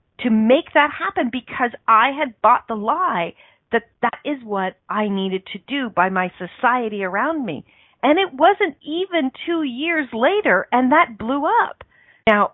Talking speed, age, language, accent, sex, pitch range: 165 wpm, 40-59, English, American, female, 185-275 Hz